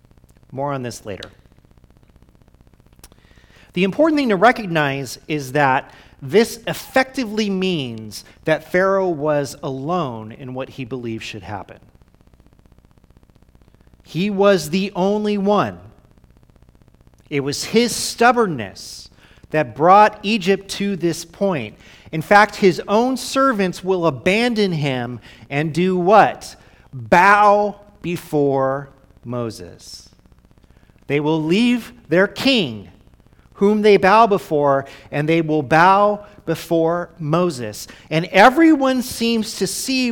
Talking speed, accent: 110 wpm, American